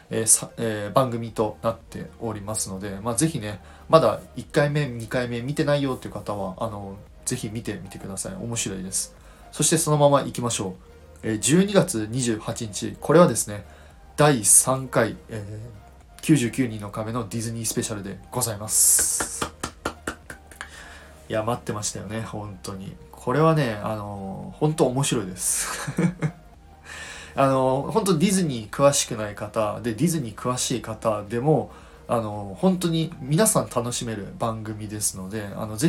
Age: 20-39